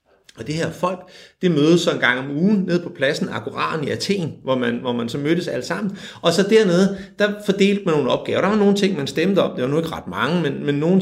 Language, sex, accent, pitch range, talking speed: Danish, male, native, 135-190 Hz, 265 wpm